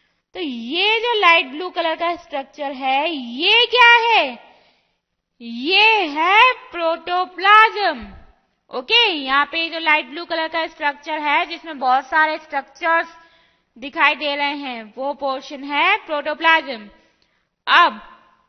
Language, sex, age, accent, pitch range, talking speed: English, female, 20-39, Indian, 290-395 Hz, 125 wpm